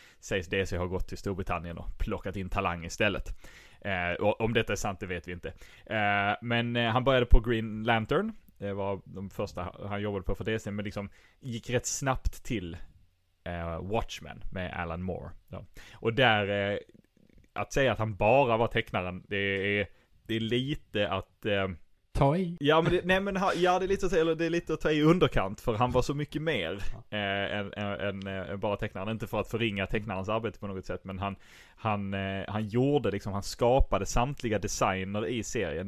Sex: male